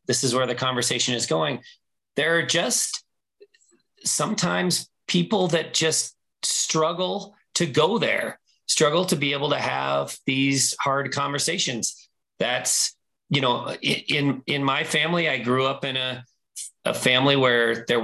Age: 40-59